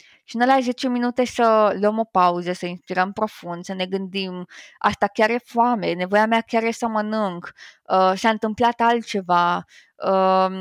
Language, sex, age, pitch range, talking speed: Romanian, female, 20-39, 195-245 Hz, 175 wpm